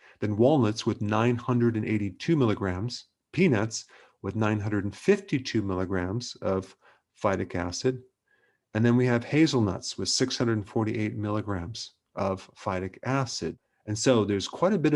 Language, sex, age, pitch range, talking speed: English, male, 40-59, 100-120 Hz, 115 wpm